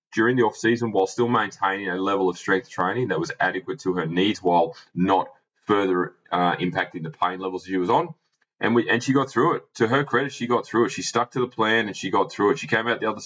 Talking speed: 260 wpm